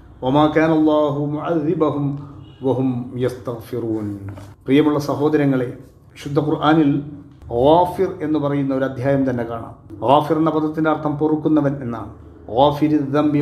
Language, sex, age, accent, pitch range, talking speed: Malayalam, male, 40-59, native, 130-150 Hz, 110 wpm